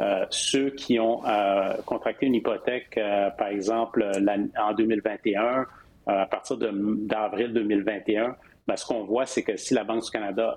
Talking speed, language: 175 wpm, French